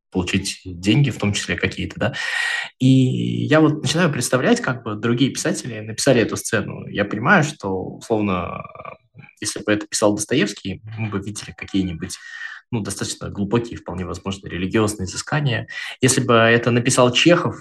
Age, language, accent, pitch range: 20-39, Russian, native, 100-135 Hz